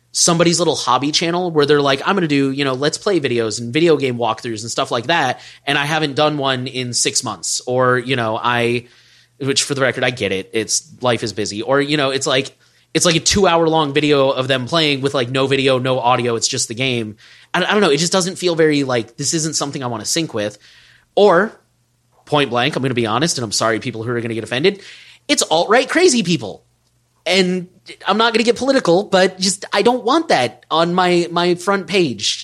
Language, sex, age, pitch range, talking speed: English, male, 20-39, 125-195 Hz, 235 wpm